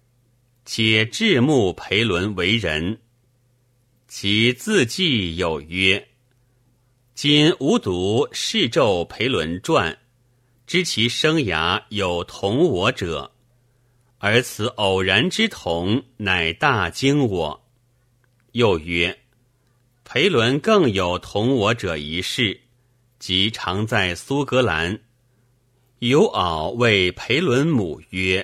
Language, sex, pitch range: Chinese, male, 95-125 Hz